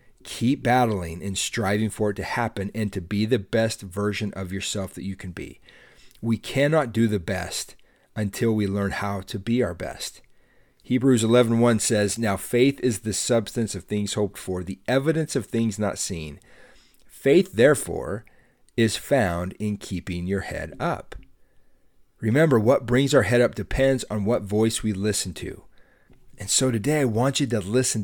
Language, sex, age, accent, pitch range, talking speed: English, male, 40-59, American, 100-125 Hz, 175 wpm